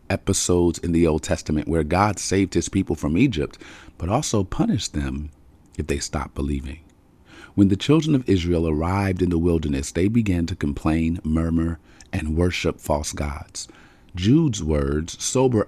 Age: 40-59